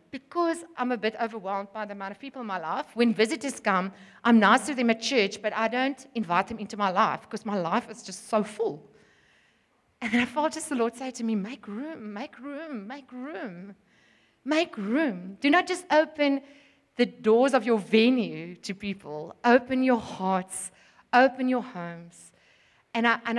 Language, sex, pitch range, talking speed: English, female, 205-245 Hz, 185 wpm